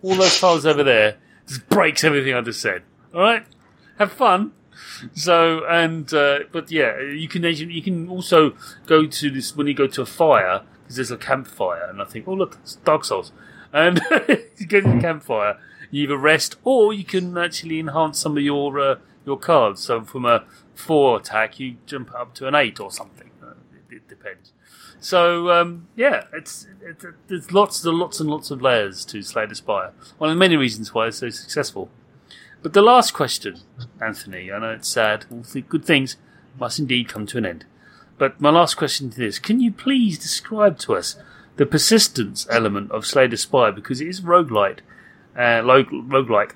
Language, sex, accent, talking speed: English, male, British, 195 wpm